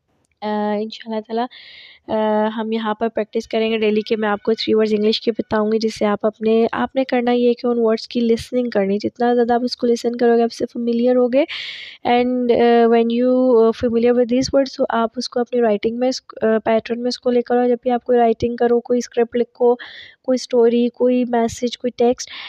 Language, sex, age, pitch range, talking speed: Urdu, female, 20-39, 225-250 Hz, 210 wpm